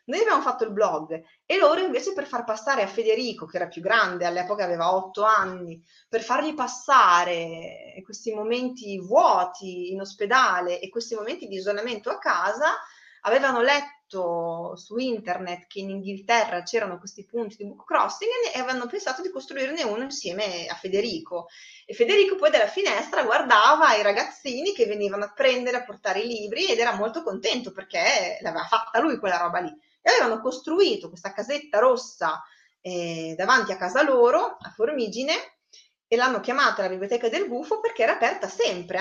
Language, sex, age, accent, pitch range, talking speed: Italian, female, 30-49, native, 190-295 Hz, 170 wpm